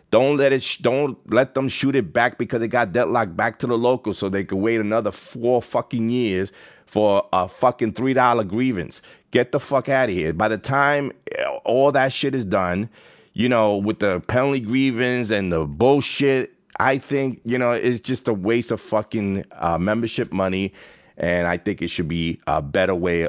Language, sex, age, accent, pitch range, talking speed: English, male, 30-49, American, 95-125 Hz, 195 wpm